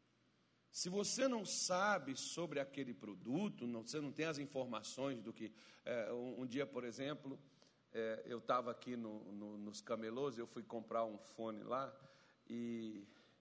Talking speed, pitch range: 140 wpm, 120-195 Hz